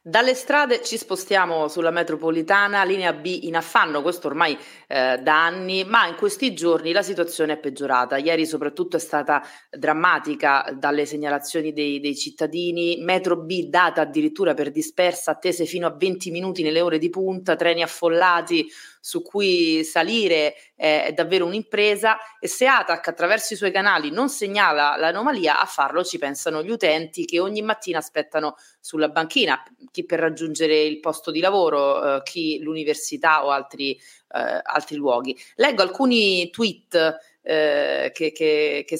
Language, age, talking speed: Italian, 30-49, 150 wpm